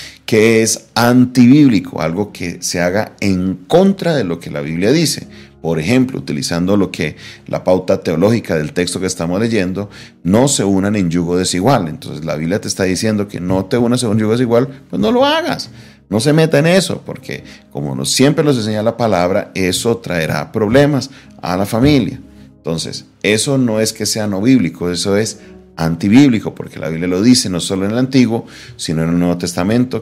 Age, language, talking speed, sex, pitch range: 40-59, Spanish, 190 wpm, male, 85-110 Hz